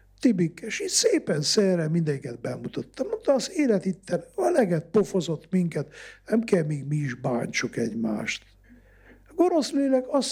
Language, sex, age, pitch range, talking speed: Hungarian, male, 60-79, 150-225 Hz, 135 wpm